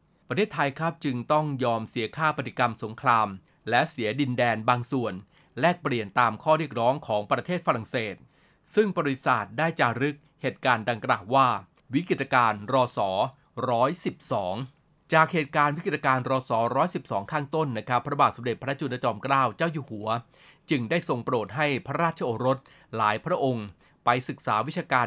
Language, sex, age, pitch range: Thai, male, 20-39, 120-155 Hz